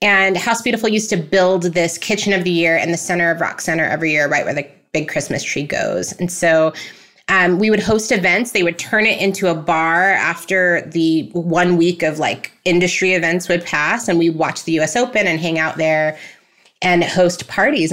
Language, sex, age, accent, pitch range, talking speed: English, female, 20-39, American, 170-205 Hz, 210 wpm